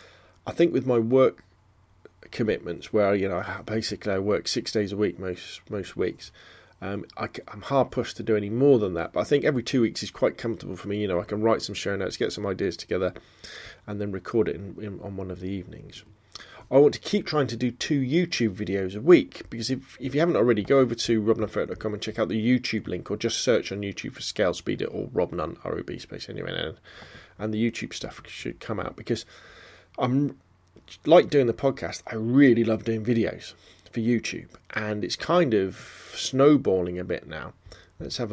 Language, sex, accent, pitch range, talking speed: English, male, British, 100-120 Hz, 210 wpm